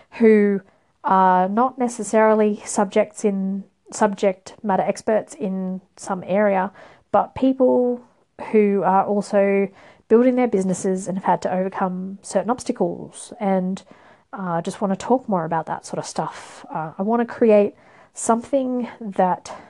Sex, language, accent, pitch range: female, English, Australian, 190-240 Hz